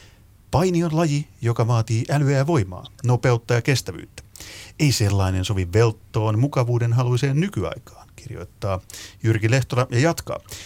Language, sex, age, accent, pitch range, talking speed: Finnish, male, 30-49, native, 100-135 Hz, 130 wpm